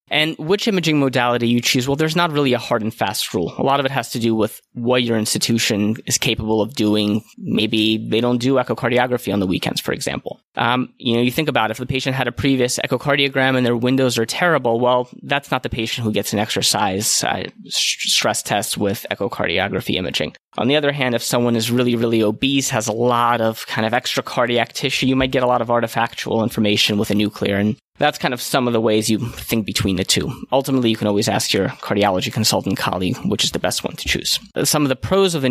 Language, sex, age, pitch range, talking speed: English, male, 20-39, 110-130 Hz, 235 wpm